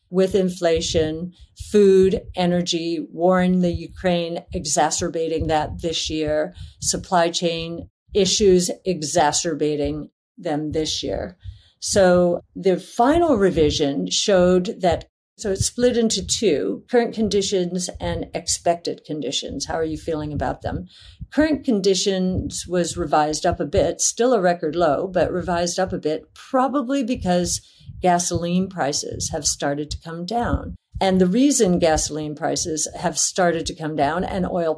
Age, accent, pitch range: 50-69, American, 155-195 Hz